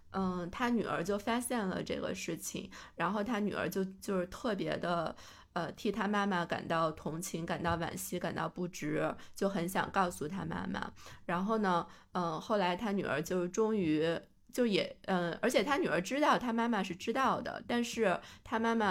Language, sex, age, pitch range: Chinese, female, 20-39, 170-205 Hz